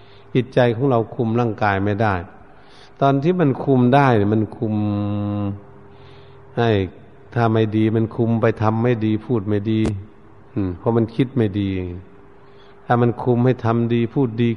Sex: male